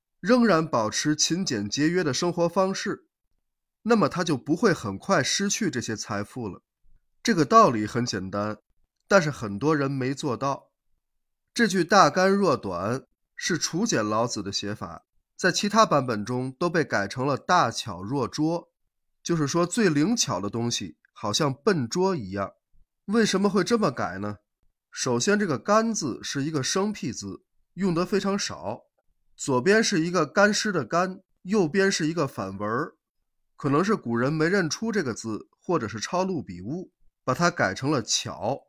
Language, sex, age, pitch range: Chinese, male, 20-39, 115-195 Hz